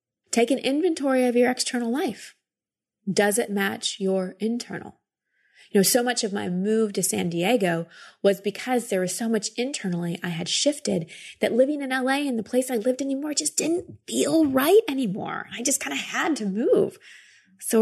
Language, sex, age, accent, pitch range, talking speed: English, female, 30-49, American, 185-255 Hz, 185 wpm